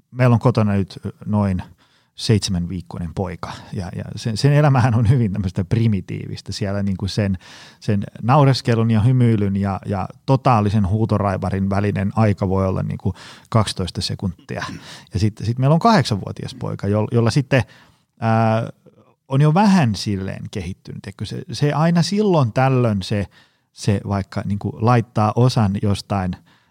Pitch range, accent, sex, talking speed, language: 100-130 Hz, native, male, 140 wpm, Finnish